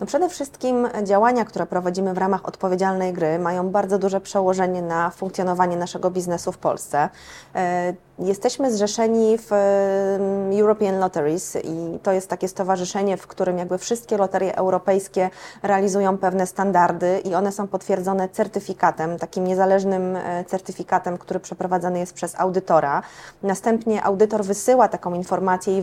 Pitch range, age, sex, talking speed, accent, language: 180-200 Hz, 20-39, female, 130 wpm, native, Polish